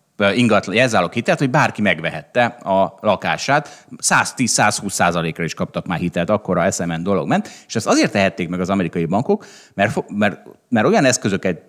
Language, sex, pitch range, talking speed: Hungarian, male, 90-130 Hz, 160 wpm